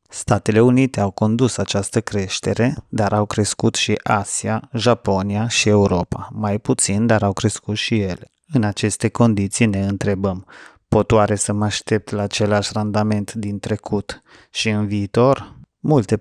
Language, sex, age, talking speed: Romanian, male, 30-49, 150 wpm